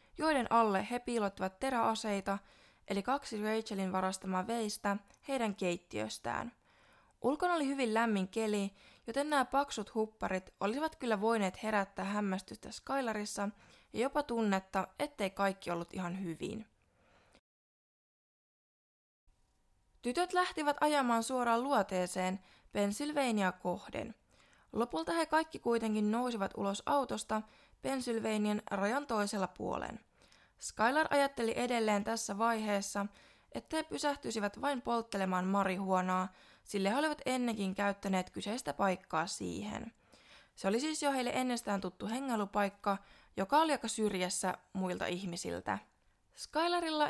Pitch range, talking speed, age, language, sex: 195-250 Hz, 110 wpm, 20-39, Finnish, female